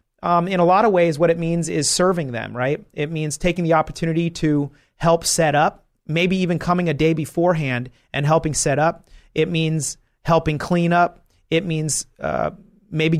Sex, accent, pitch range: male, American, 140-170 Hz